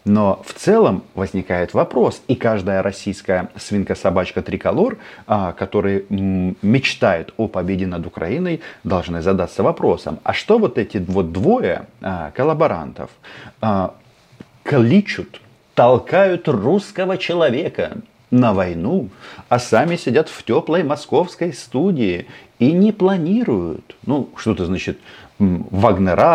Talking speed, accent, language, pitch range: 100 wpm, native, Russian, 95-150 Hz